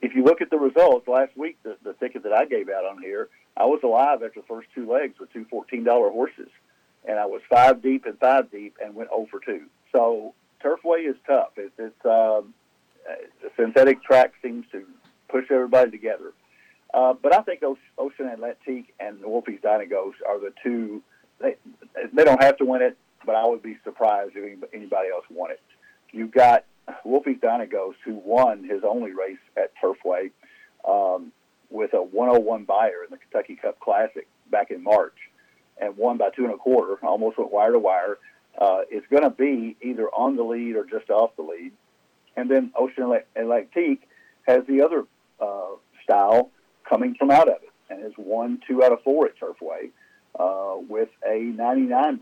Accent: American